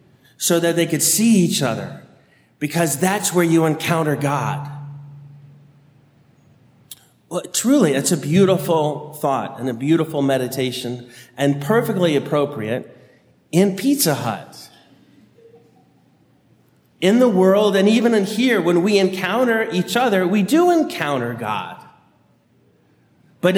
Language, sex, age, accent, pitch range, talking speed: English, male, 40-59, American, 145-195 Hz, 115 wpm